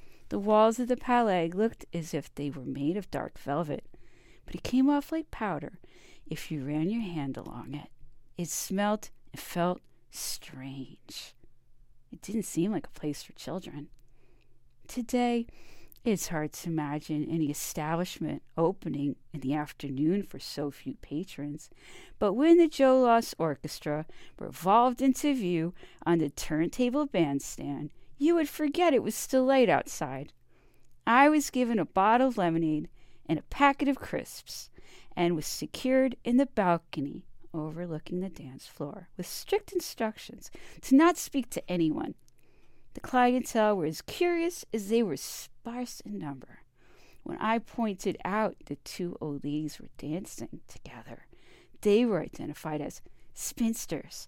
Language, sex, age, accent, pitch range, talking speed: English, female, 40-59, American, 150-245 Hz, 145 wpm